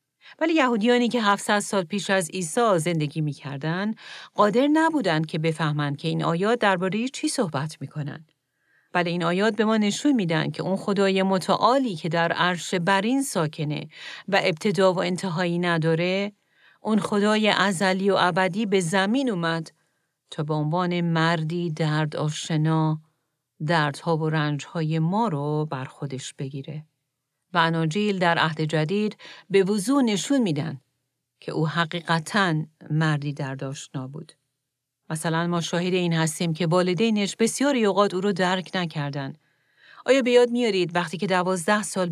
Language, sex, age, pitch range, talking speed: Persian, female, 40-59, 155-200 Hz, 145 wpm